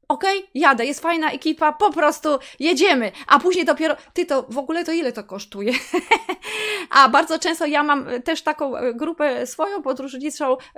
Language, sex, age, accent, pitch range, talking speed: Polish, female, 20-39, native, 250-310 Hz, 165 wpm